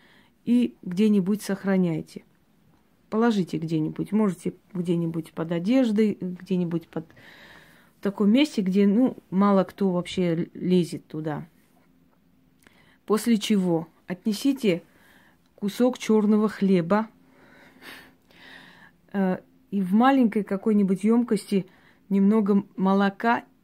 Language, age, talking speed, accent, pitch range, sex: Russian, 30-49, 85 wpm, native, 180-210 Hz, female